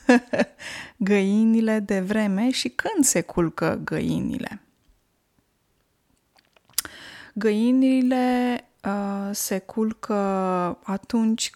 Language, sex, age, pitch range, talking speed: Romanian, female, 20-39, 180-230 Hz, 60 wpm